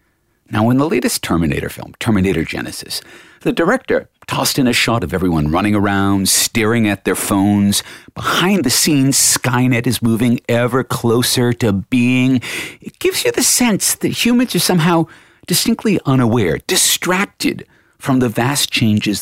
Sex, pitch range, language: male, 100-160 Hz, English